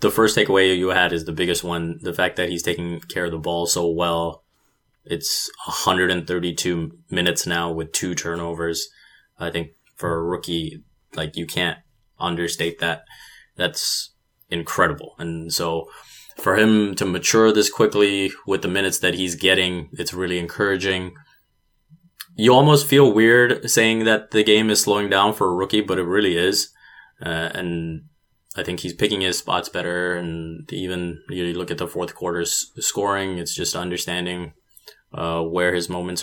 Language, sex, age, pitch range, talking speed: English, male, 20-39, 85-100 Hz, 165 wpm